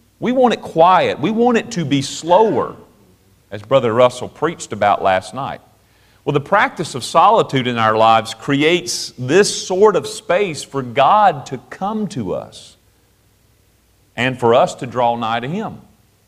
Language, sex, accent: English, male, American